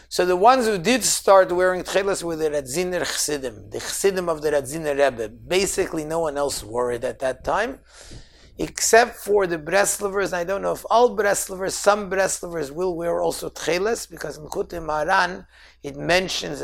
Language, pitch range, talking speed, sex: English, 140-190 Hz, 175 wpm, male